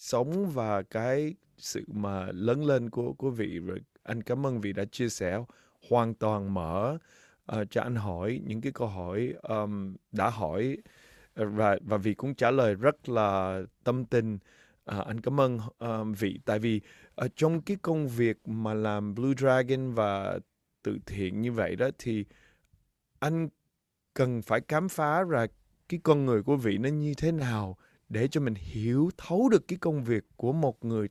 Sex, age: male, 20-39